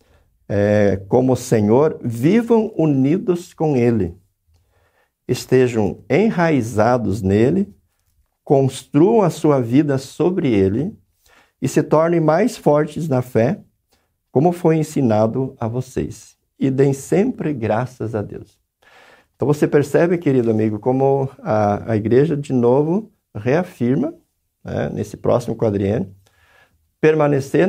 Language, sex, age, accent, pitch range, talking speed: Portuguese, male, 60-79, Brazilian, 105-155 Hz, 115 wpm